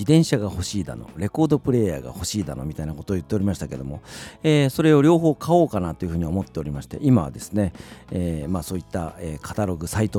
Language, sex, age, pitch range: Japanese, male, 40-59, 85-120 Hz